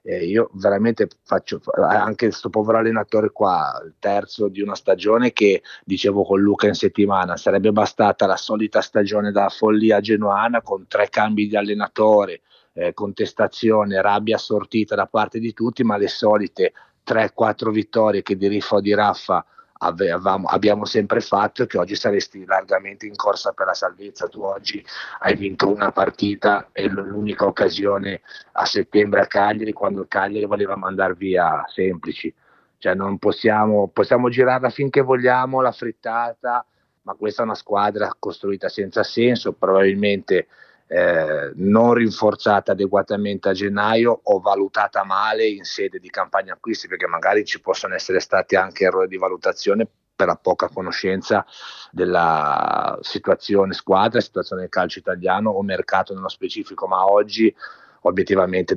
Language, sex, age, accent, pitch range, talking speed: Italian, male, 30-49, native, 100-115 Hz, 145 wpm